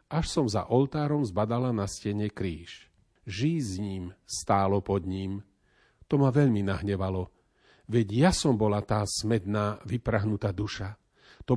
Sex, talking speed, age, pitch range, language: male, 140 wpm, 40-59, 100-135 Hz, Slovak